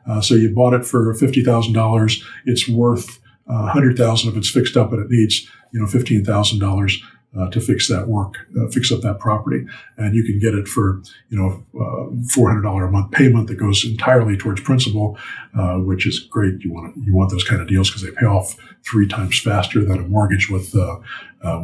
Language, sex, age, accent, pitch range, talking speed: English, male, 50-69, American, 100-120 Hz, 230 wpm